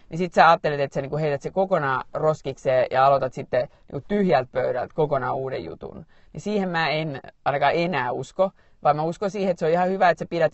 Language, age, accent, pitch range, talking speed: Finnish, 30-49, native, 140-180 Hz, 215 wpm